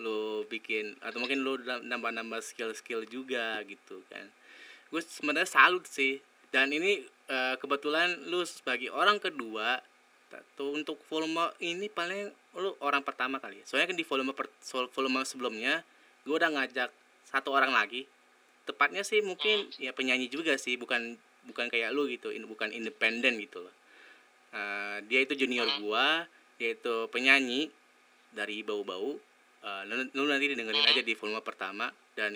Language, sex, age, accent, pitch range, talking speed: Indonesian, male, 20-39, native, 110-145 Hz, 150 wpm